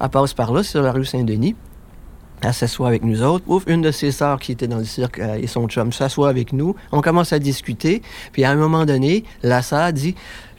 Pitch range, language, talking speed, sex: 115-145 Hz, French, 245 wpm, male